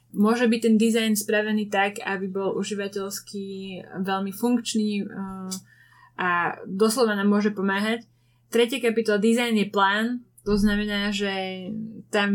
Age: 20-39